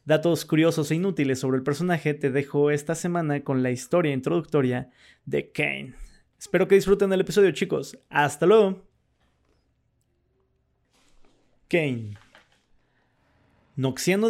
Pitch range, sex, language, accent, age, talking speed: 130-185 Hz, male, Spanish, Mexican, 30-49, 115 wpm